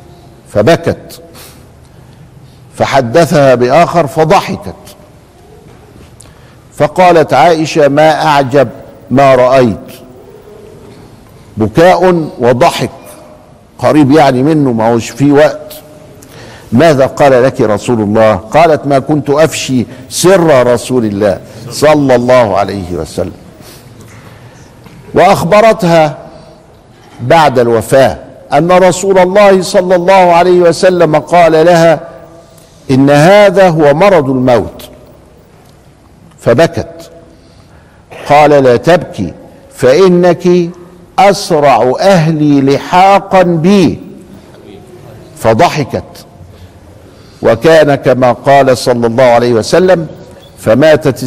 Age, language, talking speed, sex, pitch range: 50-69, Arabic, 80 wpm, male, 120-165 Hz